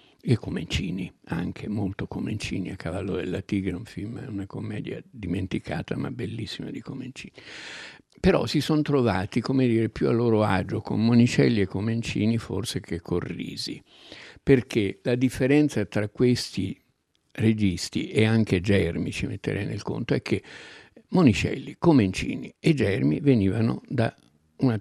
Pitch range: 95-120 Hz